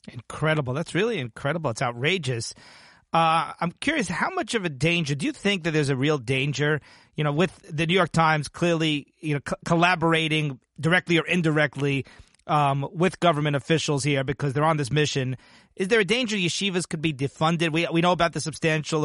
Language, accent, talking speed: English, American, 190 wpm